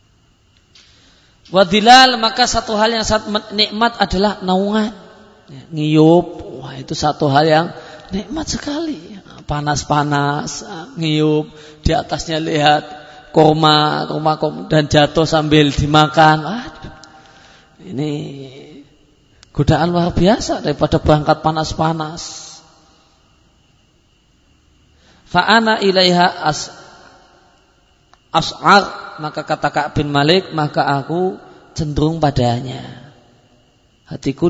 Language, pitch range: Indonesian, 140-175 Hz